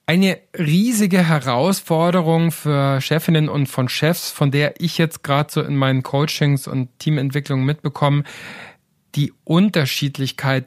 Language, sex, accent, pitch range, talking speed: German, male, German, 135-165 Hz, 125 wpm